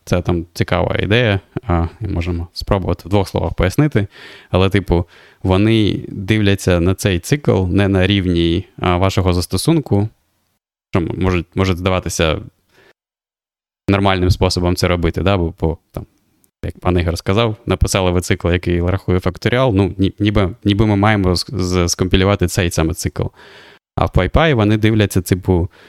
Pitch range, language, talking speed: 90-105 Hz, Ukrainian, 135 wpm